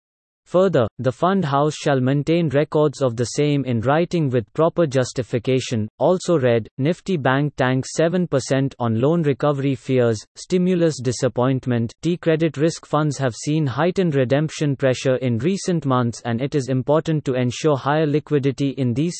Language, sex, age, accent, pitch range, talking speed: English, male, 30-49, Indian, 125-155 Hz, 155 wpm